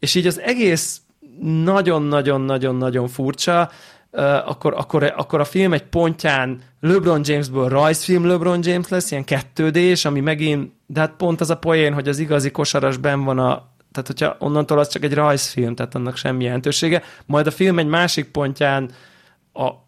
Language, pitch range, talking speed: Hungarian, 135-160 Hz, 165 wpm